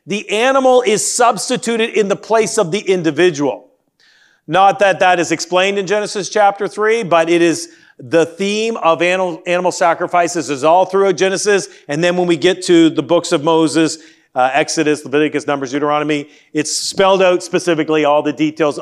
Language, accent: English, American